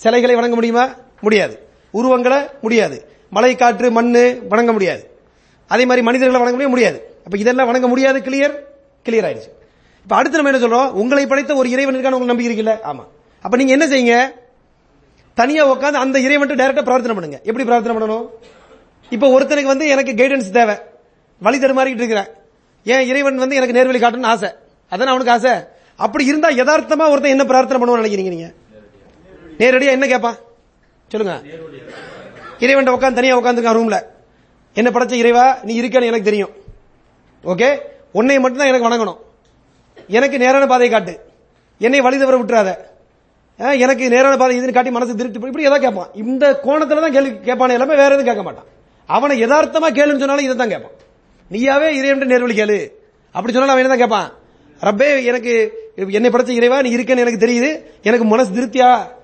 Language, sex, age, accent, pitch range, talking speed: English, male, 30-49, Indian, 230-270 Hz, 50 wpm